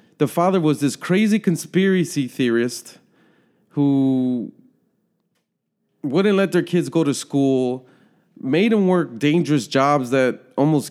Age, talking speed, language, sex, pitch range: 30-49, 120 wpm, English, male, 130-170 Hz